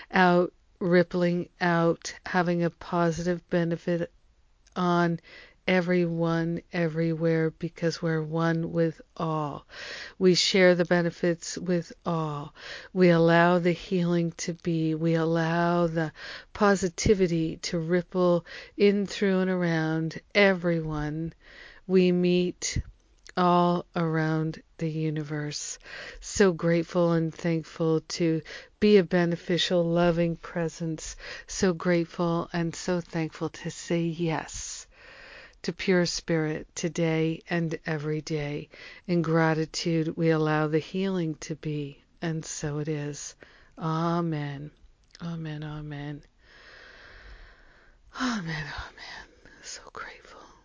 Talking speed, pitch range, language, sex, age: 105 wpm, 160-175 Hz, English, female, 50-69